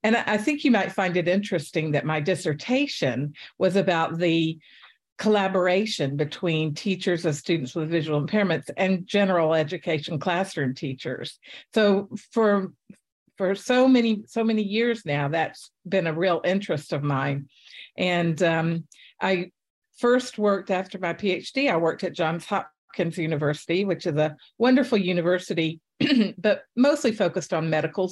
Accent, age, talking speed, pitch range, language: American, 50-69, 145 wpm, 165-200 Hz, English